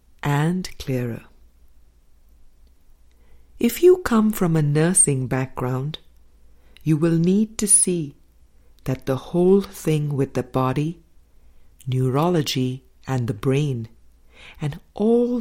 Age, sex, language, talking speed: 60-79, female, English, 105 wpm